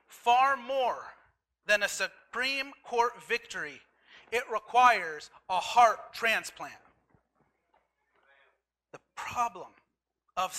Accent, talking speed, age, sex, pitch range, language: American, 85 wpm, 30-49, male, 195-245 Hz, English